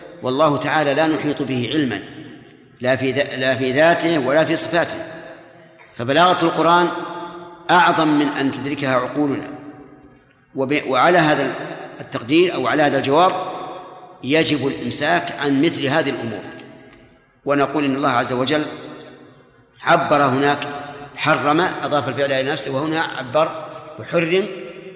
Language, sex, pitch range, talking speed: Arabic, male, 140-170 Hz, 120 wpm